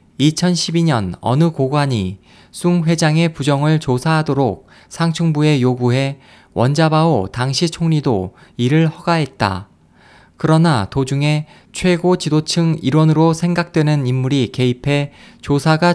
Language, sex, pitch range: Korean, male, 125-160 Hz